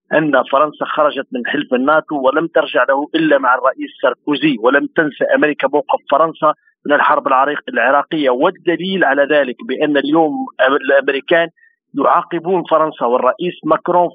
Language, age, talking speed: Arabic, 50-69, 130 wpm